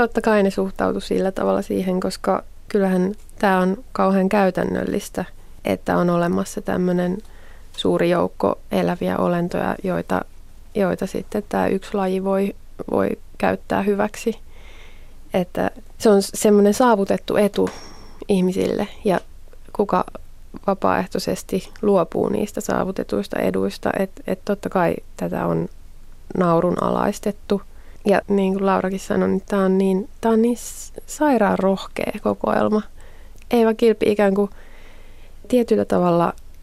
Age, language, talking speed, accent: 20-39, Finnish, 115 wpm, native